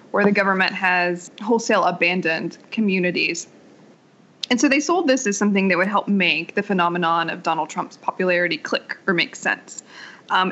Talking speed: 165 wpm